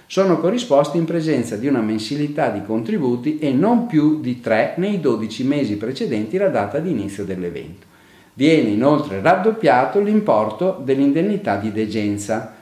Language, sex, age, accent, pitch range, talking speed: Italian, male, 50-69, native, 110-165 Hz, 145 wpm